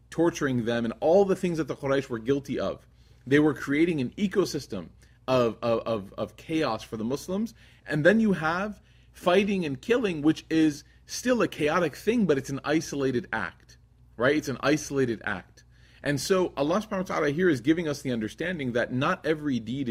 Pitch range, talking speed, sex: 125-170 Hz, 195 wpm, male